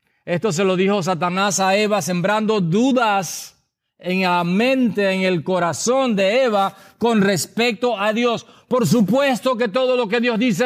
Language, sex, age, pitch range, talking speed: English, male, 40-59, 155-210 Hz, 165 wpm